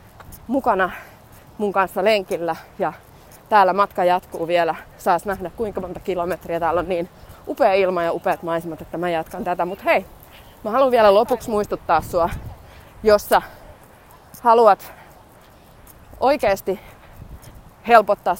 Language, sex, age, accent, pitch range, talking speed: Finnish, female, 20-39, native, 165-195 Hz, 125 wpm